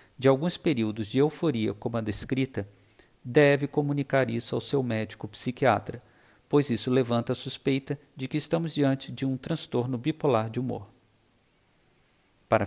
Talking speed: 145 wpm